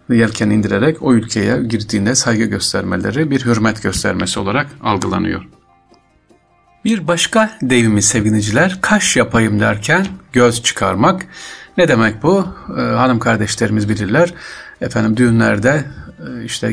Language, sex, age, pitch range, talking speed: Turkish, male, 50-69, 105-135 Hz, 110 wpm